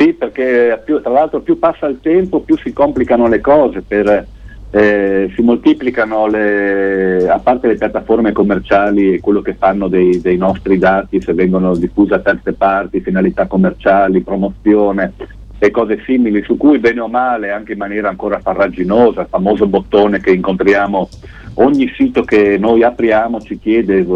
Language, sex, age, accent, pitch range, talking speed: Italian, male, 50-69, native, 95-120 Hz, 165 wpm